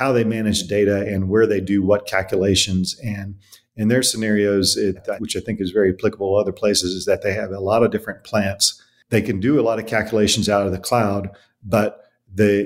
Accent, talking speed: American, 215 wpm